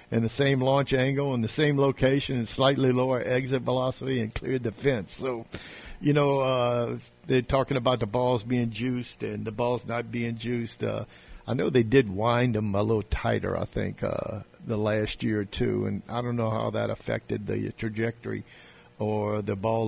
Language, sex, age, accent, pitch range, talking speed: English, male, 50-69, American, 110-130 Hz, 195 wpm